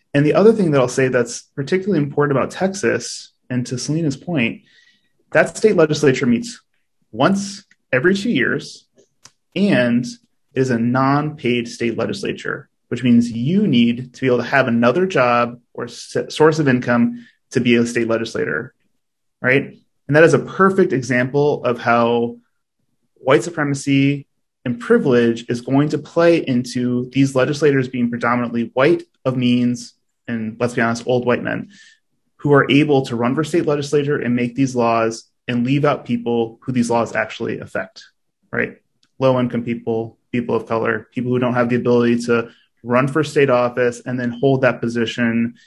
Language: English